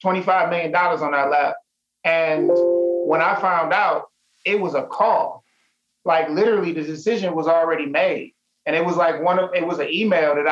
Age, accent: 30-49, American